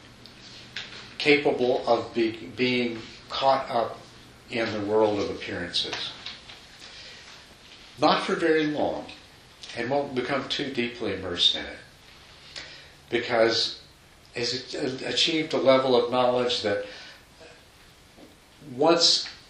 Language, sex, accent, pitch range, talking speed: English, male, American, 105-130 Hz, 95 wpm